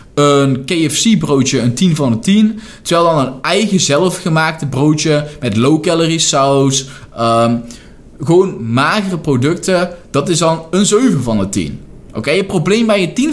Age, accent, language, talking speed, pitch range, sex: 20-39, Dutch, Dutch, 165 wpm, 130-185 Hz, male